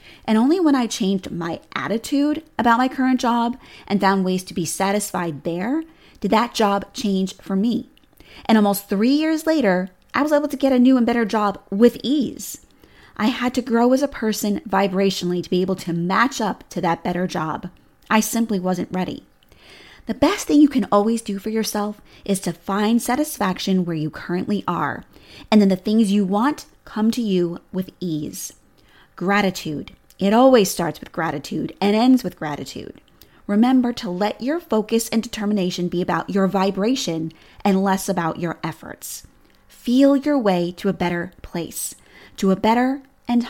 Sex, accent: female, American